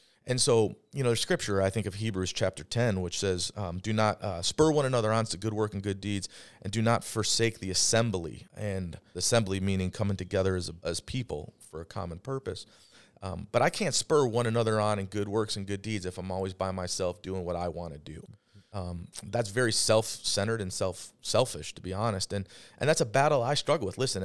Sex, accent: male, American